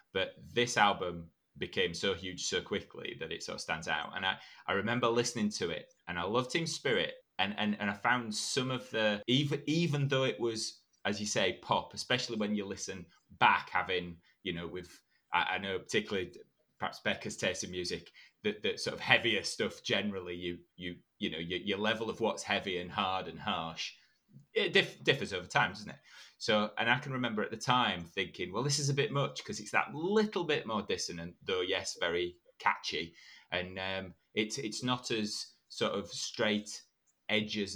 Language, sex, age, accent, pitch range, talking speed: English, male, 30-49, British, 100-130 Hz, 200 wpm